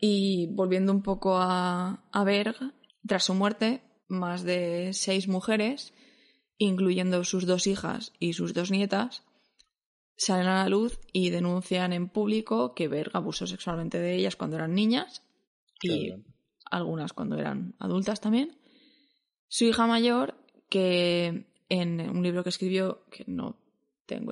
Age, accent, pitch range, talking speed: 20-39, Spanish, 180-220 Hz, 140 wpm